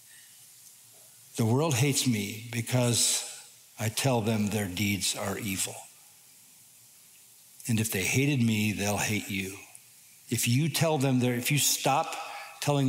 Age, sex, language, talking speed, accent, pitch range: 50-69, male, English, 130 wpm, American, 110-130 Hz